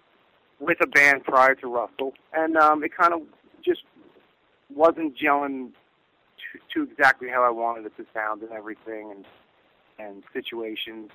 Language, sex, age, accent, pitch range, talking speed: English, male, 40-59, American, 115-150 Hz, 145 wpm